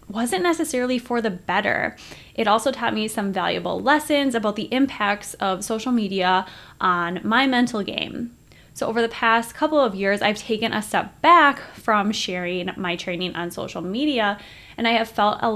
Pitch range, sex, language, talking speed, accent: 195-245 Hz, female, English, 175 wpm, American